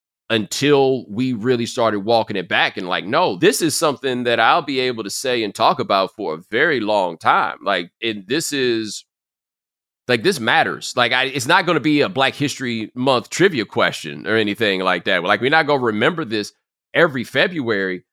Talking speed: 200 wpm